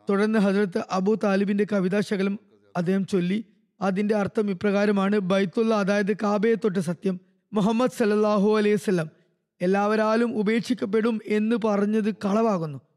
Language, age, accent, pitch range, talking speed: Malayalam, 20-39, native, 195-220 Hz, 105 wpm